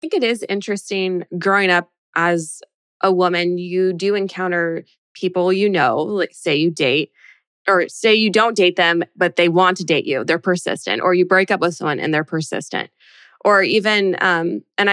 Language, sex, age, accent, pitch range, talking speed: English, female, 20-39, American, 165-190 Hz, 190 wpm